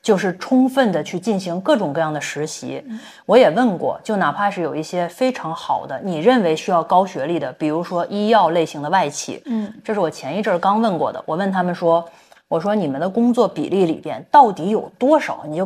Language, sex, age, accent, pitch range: Chinese, female, 20-39, native, 155-220 Hz